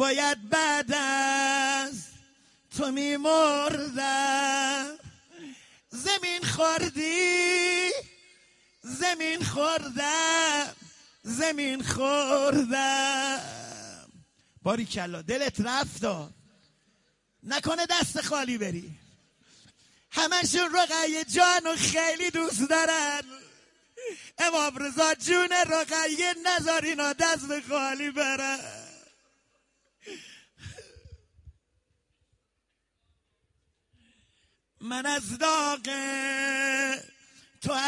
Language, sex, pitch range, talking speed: Persian, male, 270-320 Hz, 55 wpm